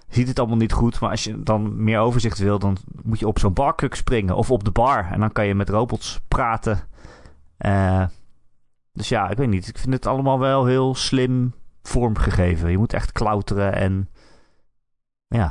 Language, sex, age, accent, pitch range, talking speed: Dutch, male, 30-49, Dutch, 95-115 Hz, 195 wpm